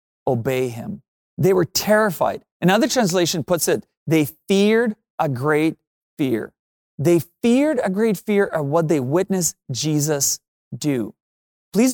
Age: 30-49